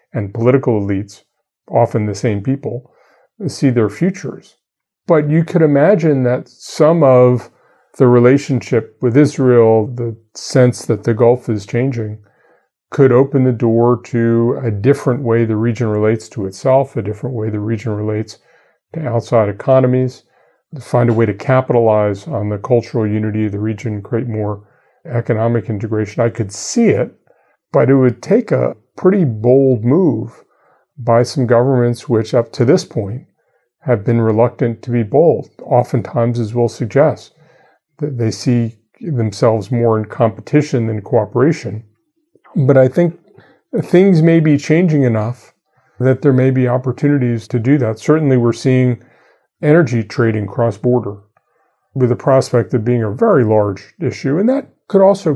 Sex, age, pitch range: male, 40-59, 115-135 Hz